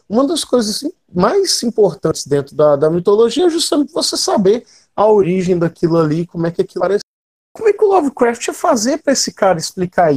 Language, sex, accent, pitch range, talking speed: Portuguese, male, Brazilian, 170-230 Hz, 195 wpm